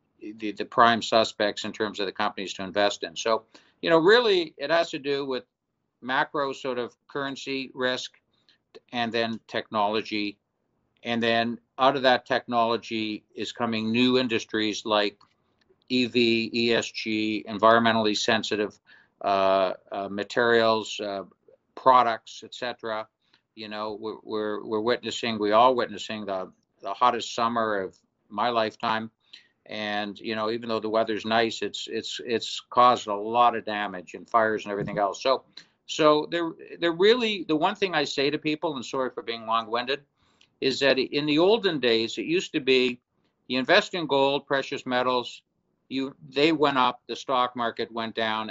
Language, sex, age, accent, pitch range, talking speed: English, male, 50-69, American, 110-135 Hz, 160 wpm